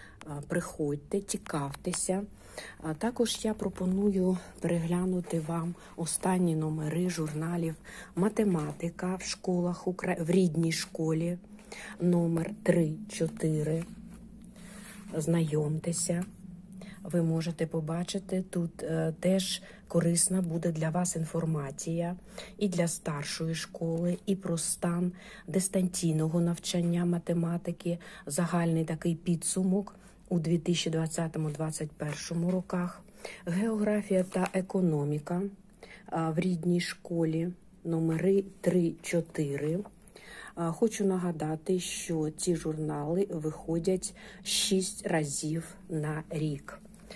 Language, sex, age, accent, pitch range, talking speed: Ukrainian, female, 50-69, native, 160-190 Hz, 80 wpm